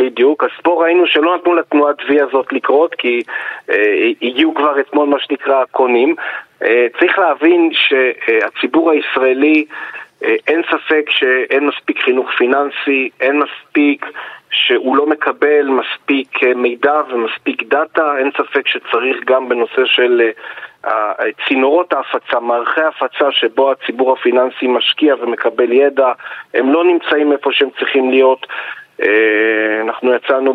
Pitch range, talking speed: 130-170 Hz, 130 wpm